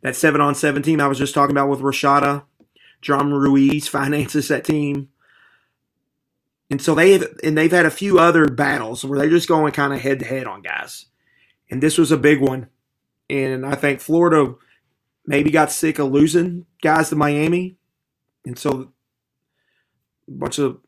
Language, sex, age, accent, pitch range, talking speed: English, male, 30-49, American, 135-150 Hz, 170 wpm